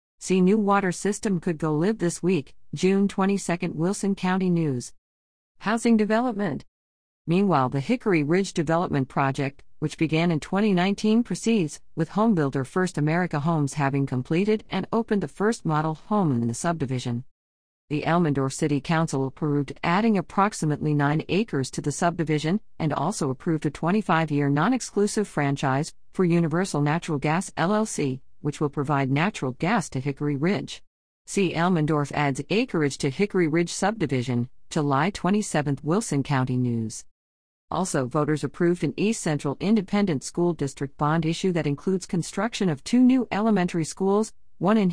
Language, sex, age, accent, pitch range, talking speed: English, female, 50-69, American, 140-195 Hz, 145 wpm